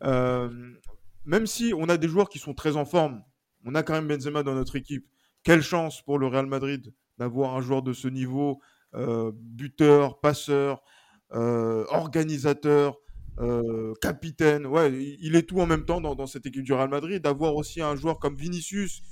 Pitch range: 130-160 Hz